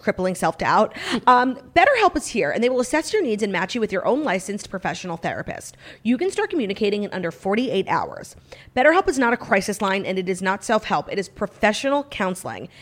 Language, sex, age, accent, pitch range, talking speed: English, female, 30-49, American, 180-245 Hz, 205 wpm